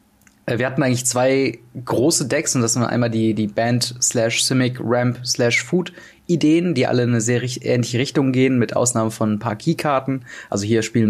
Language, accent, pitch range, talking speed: German, German, 115-130 Hz, 160 wpm